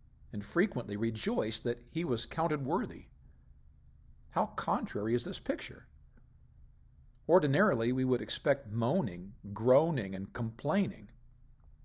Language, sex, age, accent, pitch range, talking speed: English, male, 50-69, American, 115-145 Hz, 105 wpm